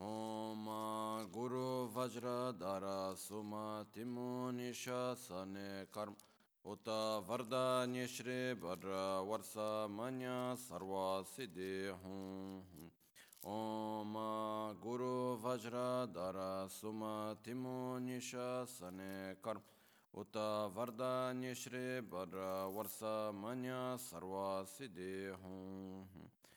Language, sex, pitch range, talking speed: Italian, male, 95-125 Hz, 70 wpm